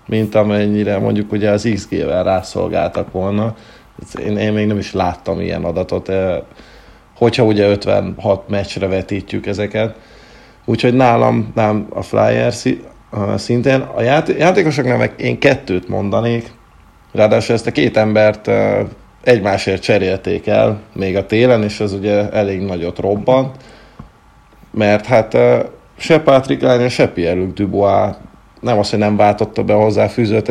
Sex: male